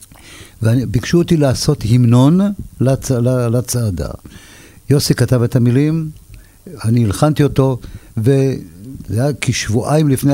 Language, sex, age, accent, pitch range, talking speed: Hebrew, male, 50-69, native, 105-140 Hz, 105 wpm